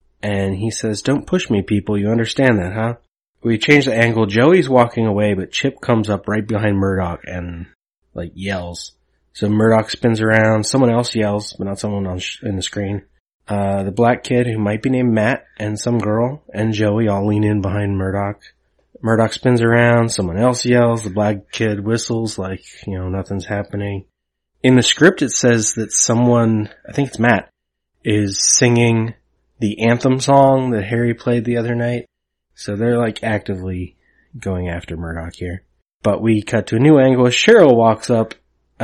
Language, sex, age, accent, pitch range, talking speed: English, male, 20-39, American, 100-120 Hz, 180 wpm